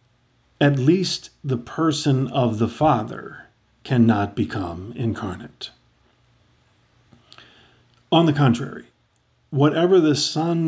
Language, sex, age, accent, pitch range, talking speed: English, male, 50-69, American, 115-135 Hz, 90 wpm